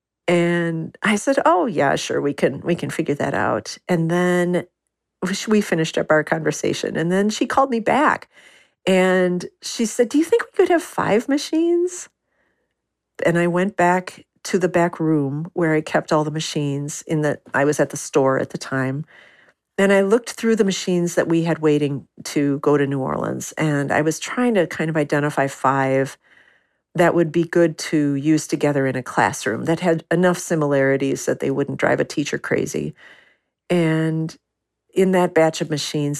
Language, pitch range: English, 150-205 Hz